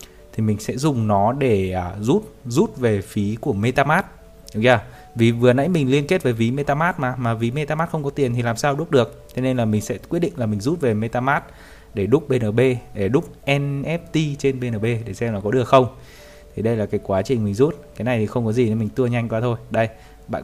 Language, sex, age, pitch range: Vietnamese, male, 20-39, 110-140 Hz